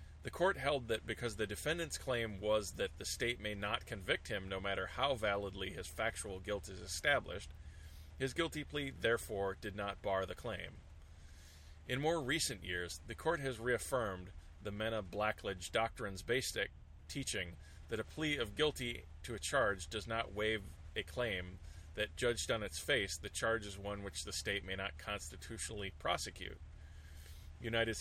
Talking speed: 165 wpm